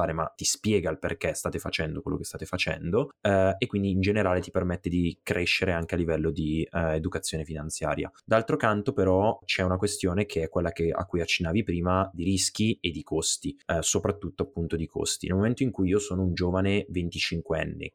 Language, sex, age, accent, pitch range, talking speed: Italian, male, 20-39, native, 85-100 Hz, 205 wpm